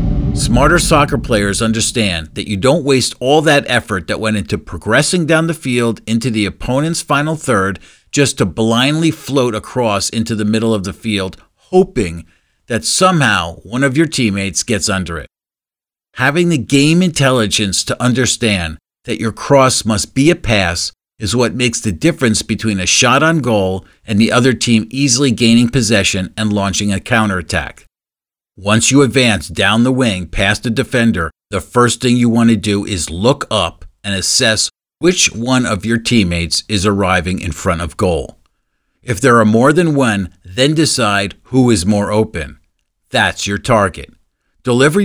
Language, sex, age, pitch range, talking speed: English, male, 50-69, 100-130 Hz, 170 wpm